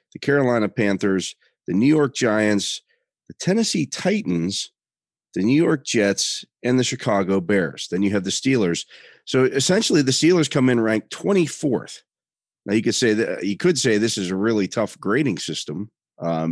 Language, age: English, 40-59